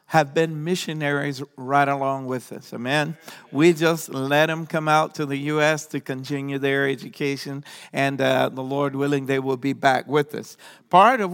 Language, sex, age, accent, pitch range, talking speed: English, male, 50-69, American, 140-170 Hz, 180 wpm